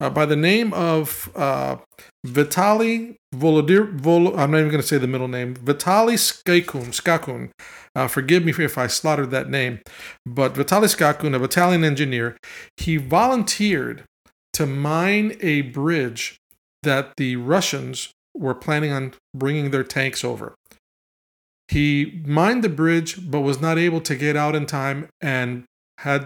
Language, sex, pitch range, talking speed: English, male, 135-165 Hz, 150 wpm